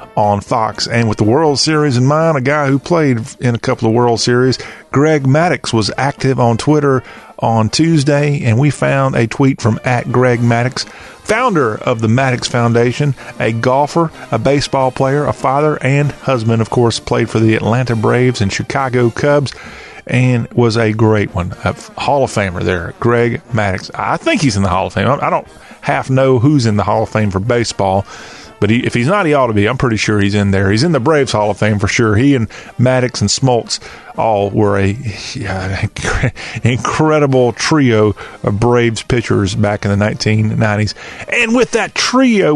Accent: American